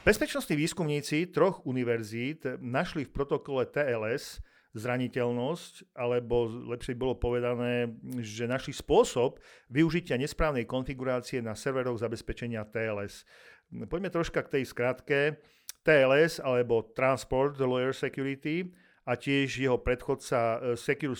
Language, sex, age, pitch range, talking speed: Slovak, male, 50-69, 120-145 Hz, 110 wpm